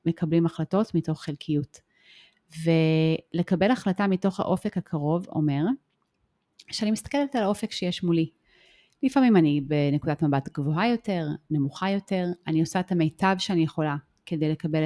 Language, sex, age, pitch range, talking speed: Hebrew, female, 30-49, 155-185 Hz, 130 wpm